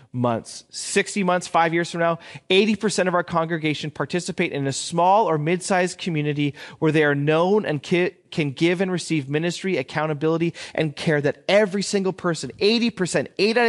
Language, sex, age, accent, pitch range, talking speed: English, male, 30-49, American, 150-185 Hz, 165 wpm